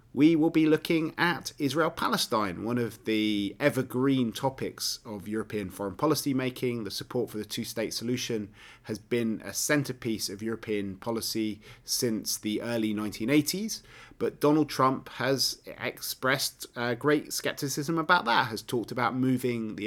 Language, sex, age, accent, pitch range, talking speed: English, male, 30-49, British, 110-140 Hz, 150 wpm